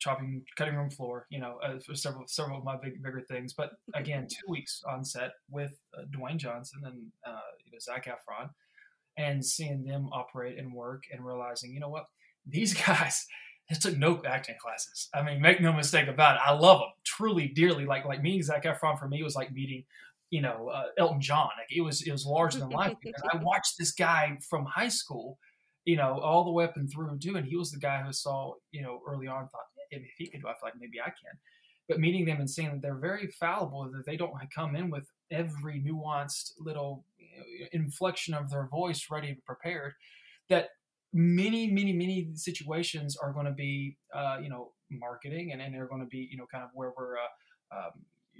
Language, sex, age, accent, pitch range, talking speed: English, male, 20-39, American, 135-170 Hz, 220 wpm